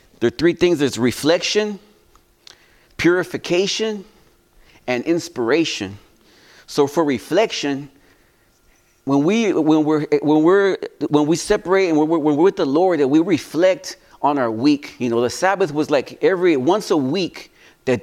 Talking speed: 155 wpm